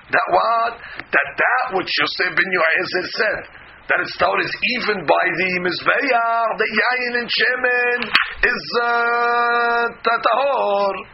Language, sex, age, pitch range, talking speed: English, male, 40-59, 195-245 Hz, 130 wpm